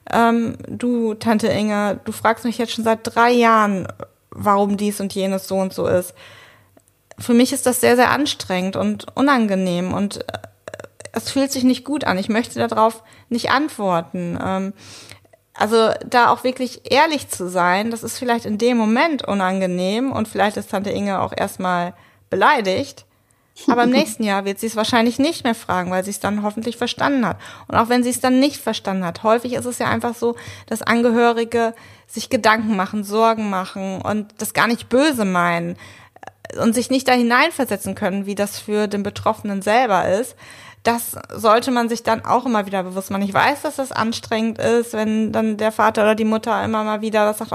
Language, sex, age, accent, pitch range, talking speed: German, female, 30-49, German, 200-240 Hz, 185 wpm